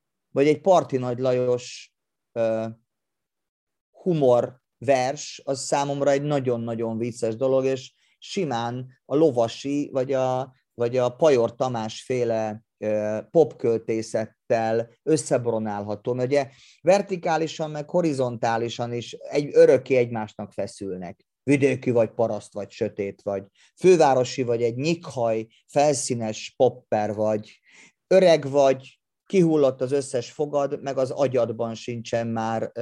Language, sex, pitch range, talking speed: Hungarian, male, 110-140 Hz, 110 wpm